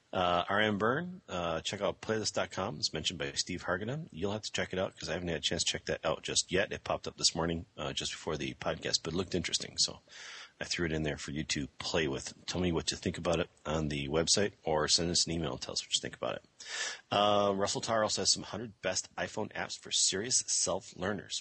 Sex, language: male, English